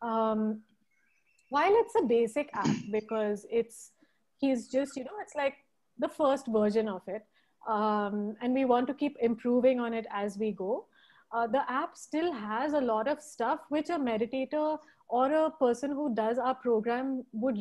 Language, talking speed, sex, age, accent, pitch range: English, 175 wpm, female, 30-49, Indian, 225-280 Hz